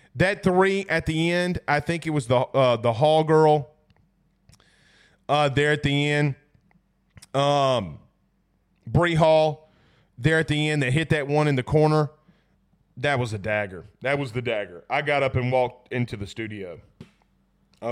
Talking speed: 165 wpm